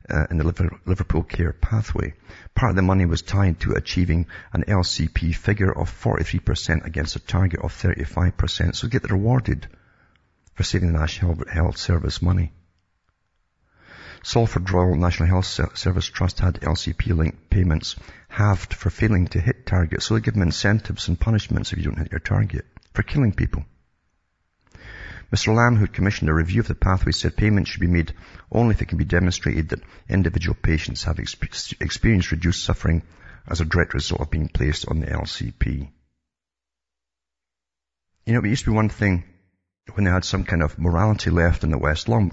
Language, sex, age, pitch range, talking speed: English, male, 50-69, 80-100 Hz, 175 wpm